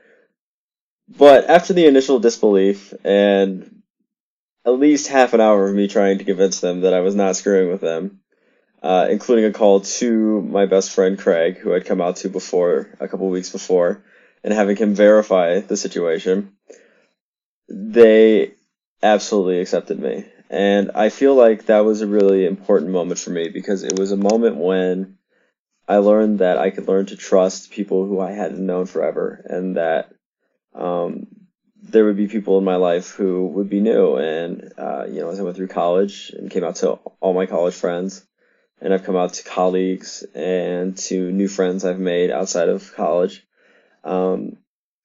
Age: 20-39